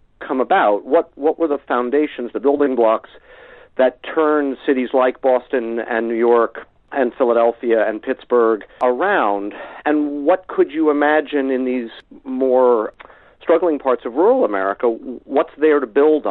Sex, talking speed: male, 145 wpm